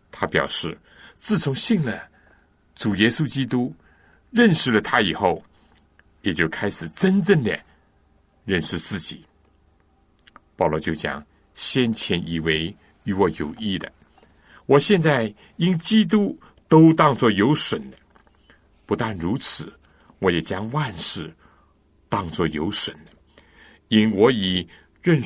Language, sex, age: Chinese, male, 60-79